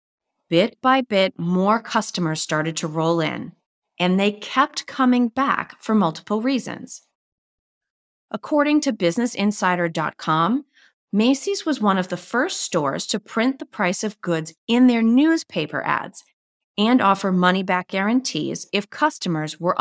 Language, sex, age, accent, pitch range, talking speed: English, female, 30-49, American, 165-240 Hz, 135 wpm